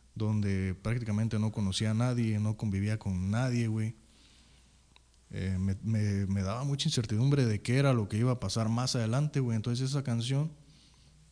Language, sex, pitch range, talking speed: Spanish, male, 100-135 Hz, 170 wpm